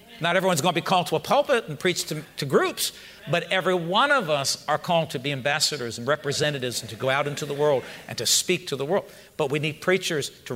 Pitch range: 135-185 Hz